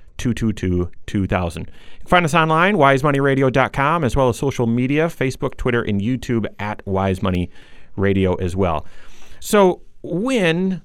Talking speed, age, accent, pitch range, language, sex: 115 wpm, 30-49, American, 105-140 Hz, English, male